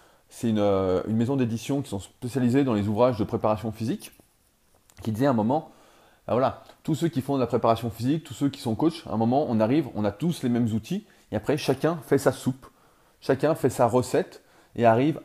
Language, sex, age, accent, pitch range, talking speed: French, male, 20-39, French, 110-135 Hz, 215 wpm